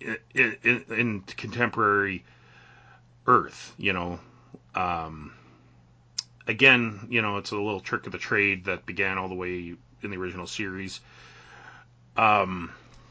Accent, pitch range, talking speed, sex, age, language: American, 80-115 Hz, 130 wpm, male, 30-49, English